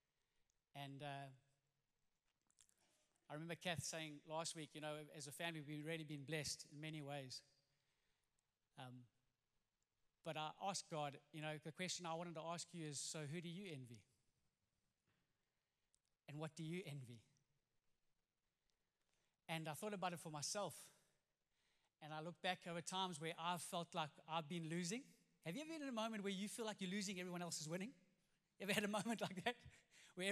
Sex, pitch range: male, 150-195 Hz